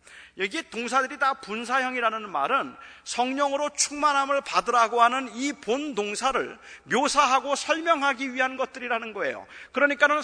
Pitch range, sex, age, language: 255-300 Hz, male, 40-59, Korean